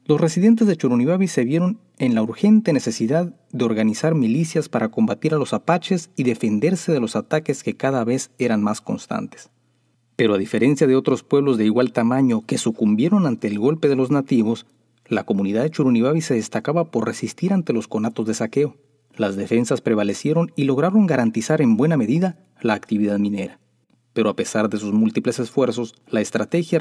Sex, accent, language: male, Mexican, Spanish